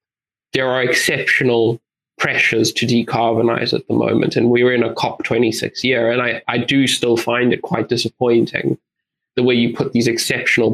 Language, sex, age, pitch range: English, male, 20-39, 115-130 Hz